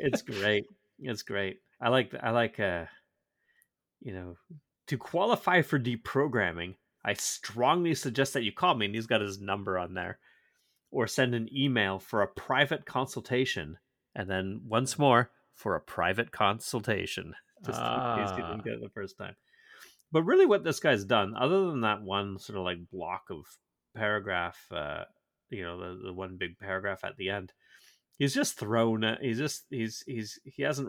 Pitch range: 95-135 Hz